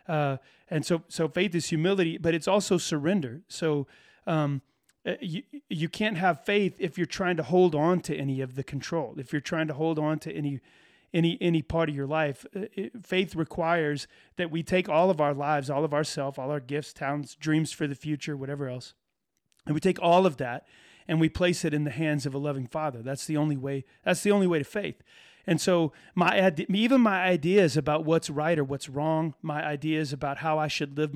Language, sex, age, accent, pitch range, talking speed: English, male, 30-49, American, 145-175 Hz, 210 wpm